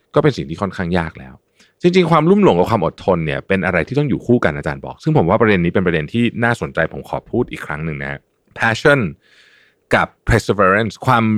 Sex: male